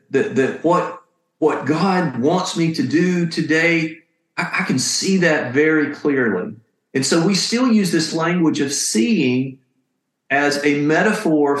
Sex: male